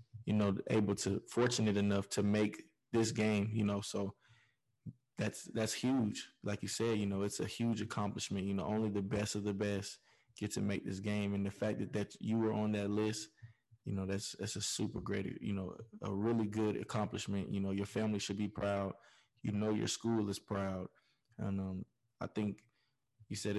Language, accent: English, American